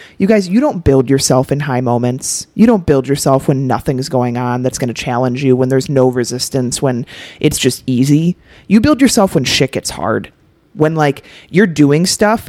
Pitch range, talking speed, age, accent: 135-190 Hz, 200 wpm, 30-49, American